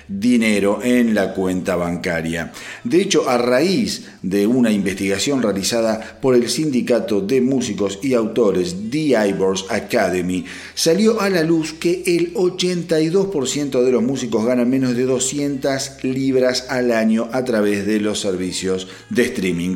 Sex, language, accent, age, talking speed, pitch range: male, Spanish, Argentinian, 40-59, 145 wpm, 100-150 Hz